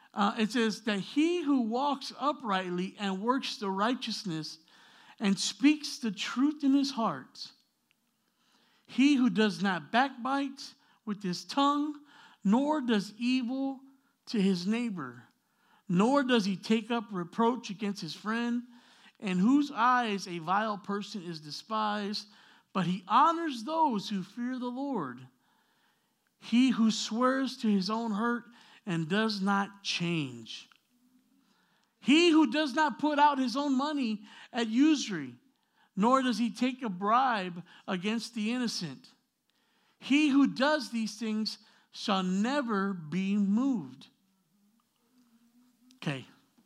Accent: American